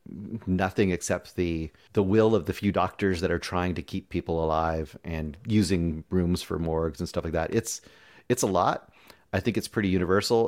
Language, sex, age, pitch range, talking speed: English, male, 30-49, 85-105 Hz, 195 wpm